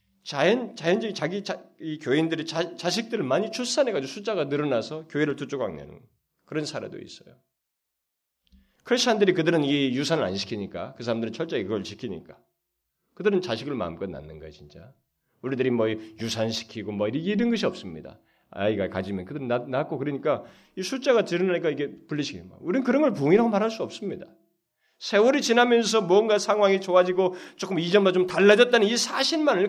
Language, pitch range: Korean, 115-190 Hz